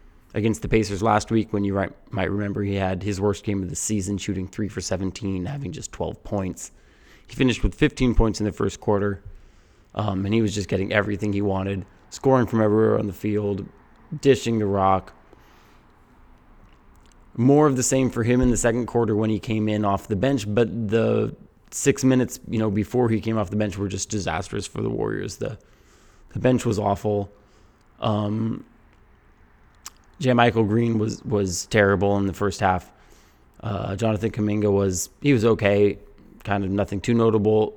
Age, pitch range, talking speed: 20-39, 95-115 Hz, 185 wpm